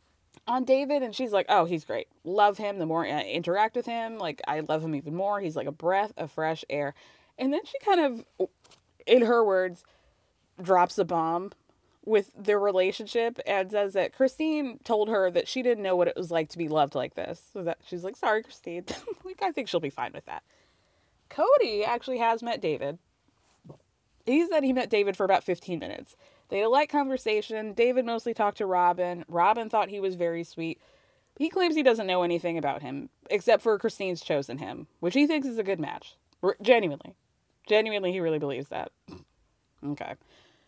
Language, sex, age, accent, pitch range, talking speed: English, female, 20-39, American, 180-260 Hz, 200 wpm